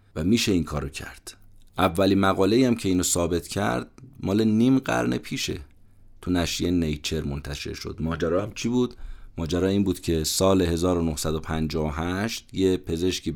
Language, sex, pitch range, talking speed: Persian, male, 85-100 Hz, 150 wpm